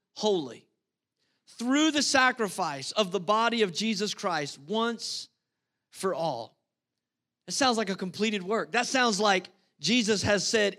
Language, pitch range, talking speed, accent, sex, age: English, 210-260 Hz, 140 wpm, American, male, 40-59